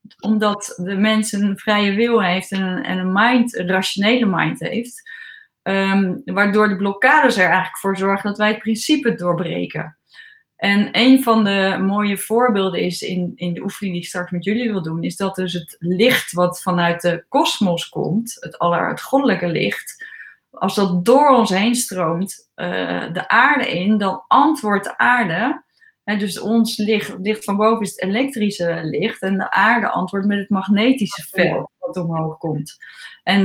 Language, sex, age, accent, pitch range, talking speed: Dutch, female, 20-39, Dutch, 180-220 Hz, 170 wpm